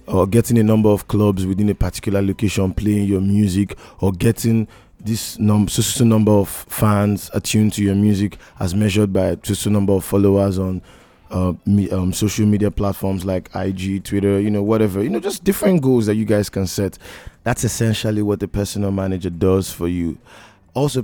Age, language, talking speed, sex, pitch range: 20-39, English, 175 wpm, male, 90-105 Hz